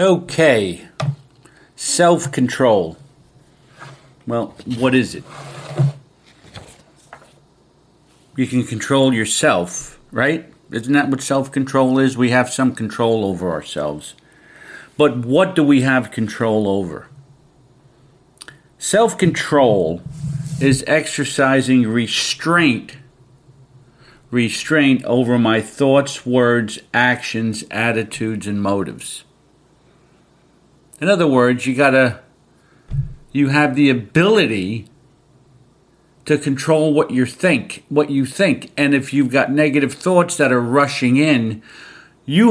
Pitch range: 125-150 Hz